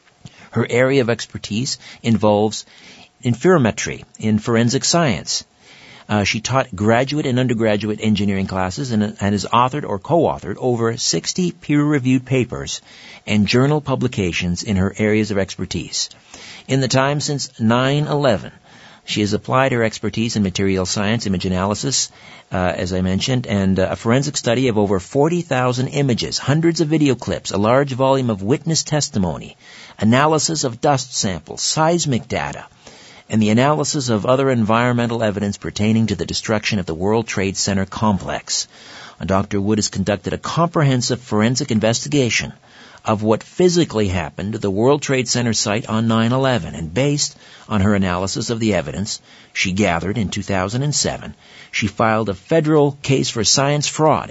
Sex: male